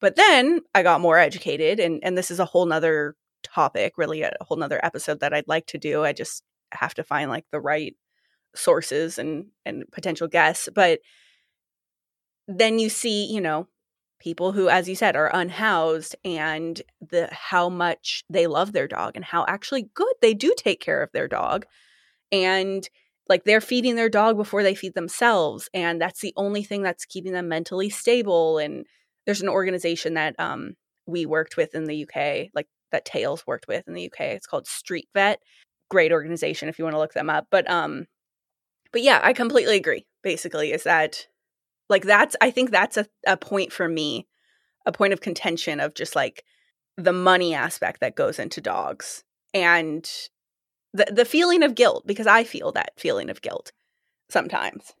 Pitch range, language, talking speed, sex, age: 165-240 Hz, English, 190 wpm, female, 20-39